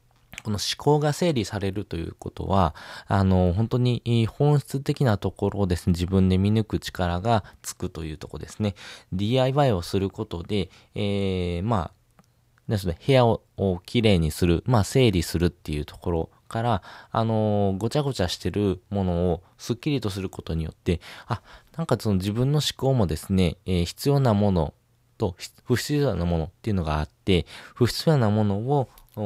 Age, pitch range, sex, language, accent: 20-39, 90-120 Hz, male, Japanese, native